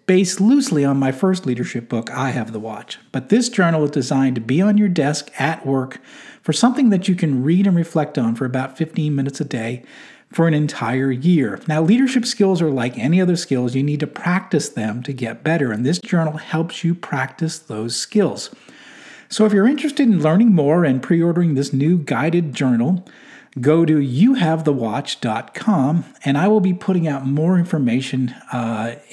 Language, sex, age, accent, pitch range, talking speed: English, male, 40-59, American, 135-185 Hz, 185 wpm